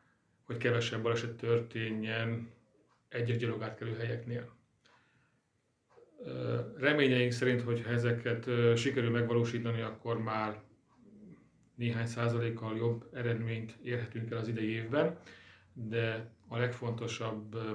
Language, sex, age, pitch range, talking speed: Hungarian, male, 40-59, 115-120 Hz, 95 wpm